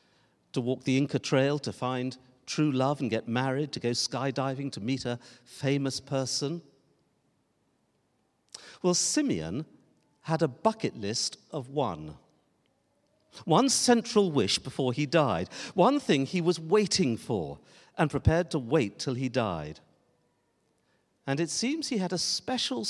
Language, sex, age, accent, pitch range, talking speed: English, male, 50-69, British, 130-185 Hz, 140 wpm